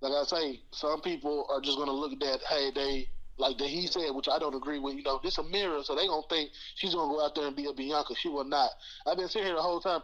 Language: English